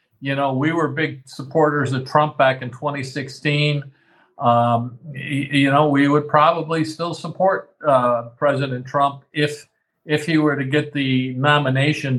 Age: 50-69